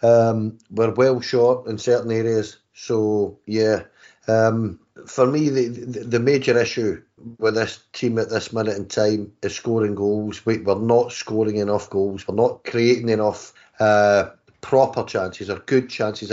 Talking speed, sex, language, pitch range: 160 wpm, male, English, 110-125 Hz